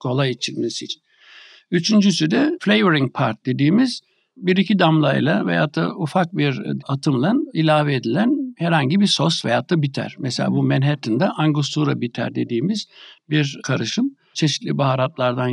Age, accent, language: 60-79, native, Turkish